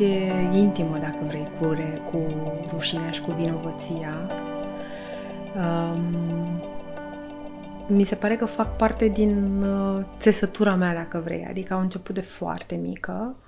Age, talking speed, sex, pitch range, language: 20-39, 125 wpm, female, 160-200 Hz, Romanian